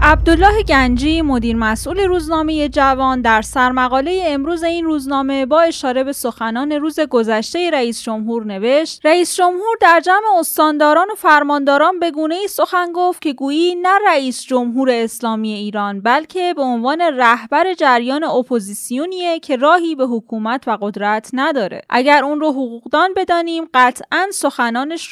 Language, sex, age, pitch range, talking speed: Persian, female, 10-29, 240-330 Hz, 140 wpm